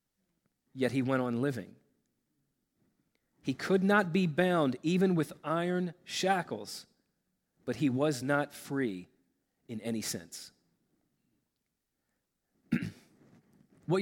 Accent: American